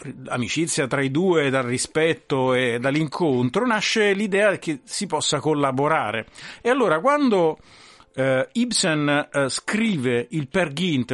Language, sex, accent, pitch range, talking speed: Italian, male, native, 130-175 Hz, 130 wpm